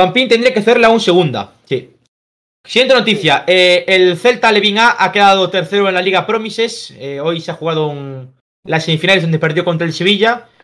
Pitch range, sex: 145-190 Hz, male